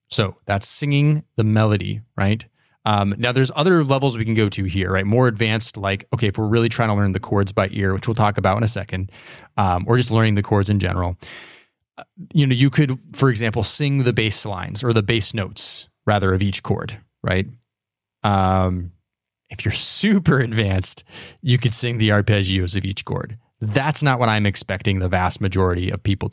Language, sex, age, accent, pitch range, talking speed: English, male, 20-39, American, 100-125 Hz, 200 wpm